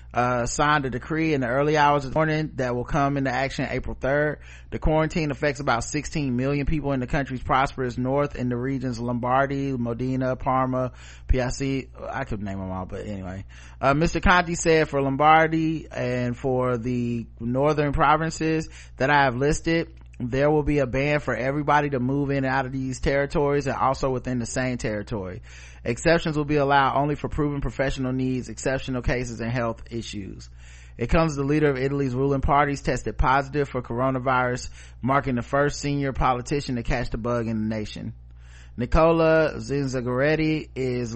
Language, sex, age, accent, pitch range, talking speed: English, male, 30-49, American, 115-145 Hz, 180 wpm